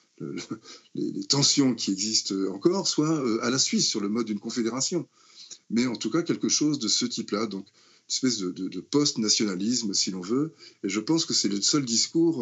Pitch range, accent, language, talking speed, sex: 100-145 Hz, French, French, 200 wpm, male